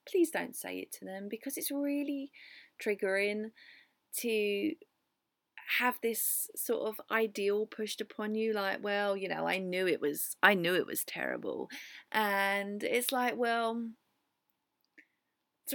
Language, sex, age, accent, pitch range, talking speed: English, female, 30-49, British, 195-250 Hz, 140 wpm